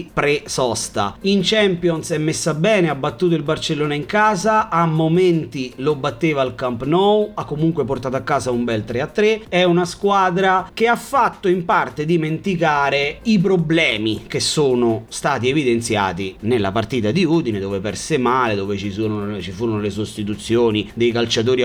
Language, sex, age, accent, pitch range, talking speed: Italian, male, 30-49, native, 115-170 Hz, 160 wpm